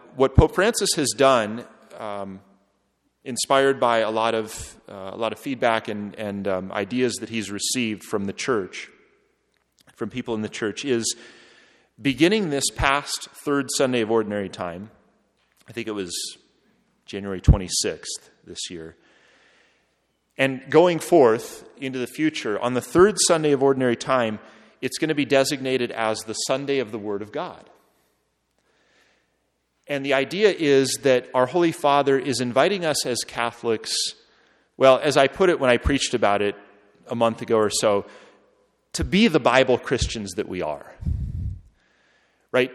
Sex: male